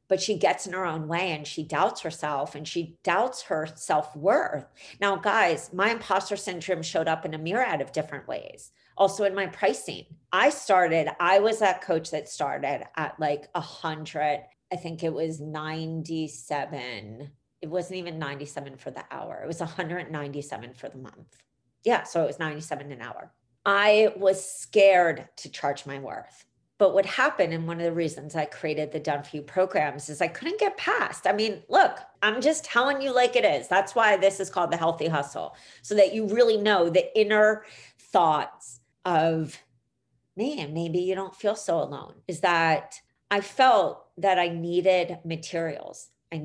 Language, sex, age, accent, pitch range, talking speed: English, female, 40-59, American, 150-195 Hz, 180 wpm